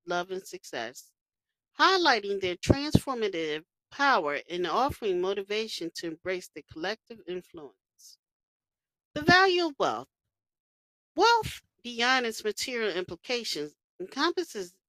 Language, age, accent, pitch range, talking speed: English, 40-59, American, 180-280 Hz, 100 wpm